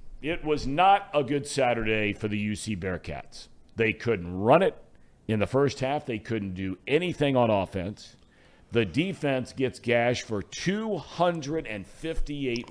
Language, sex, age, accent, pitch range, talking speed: English, male, 50-69, American, 115-155 Hz, 140 wpm